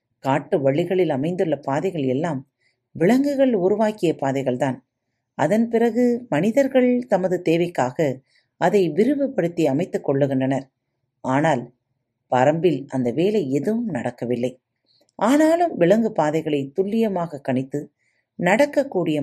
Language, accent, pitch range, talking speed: Tamil, native, 130-200 Hz, 90 wpm